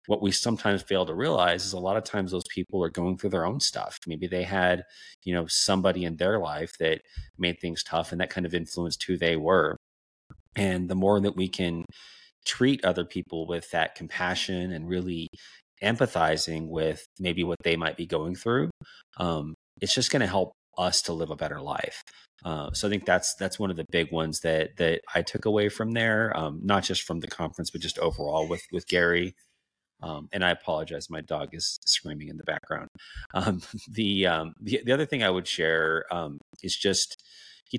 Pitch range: 80-95 Hz